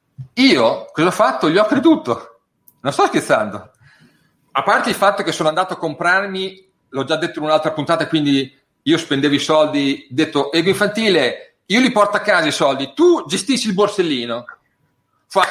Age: 40-59